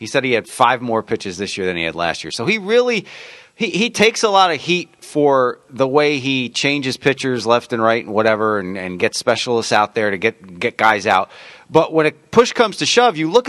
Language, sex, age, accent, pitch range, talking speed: English, male, 40-59, American, 120-170 Hz, 245 wpm